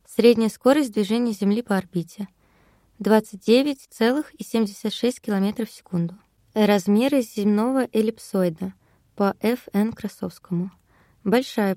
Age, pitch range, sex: 20-39, 190-230 Hz, female